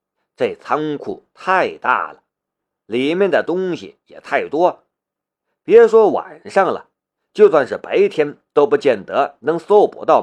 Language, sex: Chinese, male